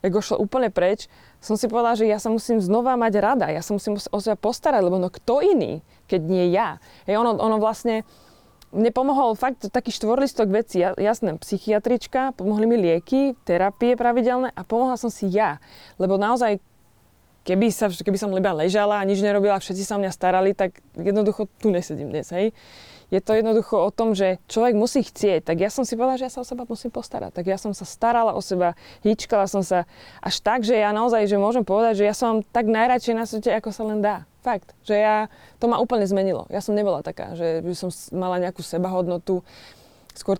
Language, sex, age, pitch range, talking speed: Slovak, female, 20-39, 185-225 Hz, 200 wpm